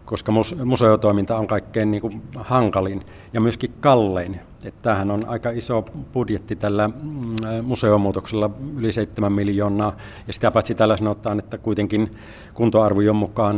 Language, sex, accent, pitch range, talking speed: Finnish, male, native, 100-115 Hz, 130 wpm